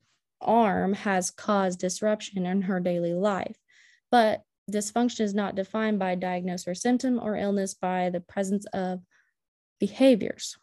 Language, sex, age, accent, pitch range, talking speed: English, female, 20-39, American, 185-215 Hz, 135 wpm